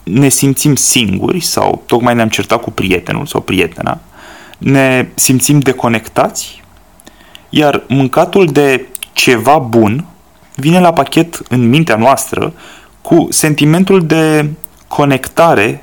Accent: native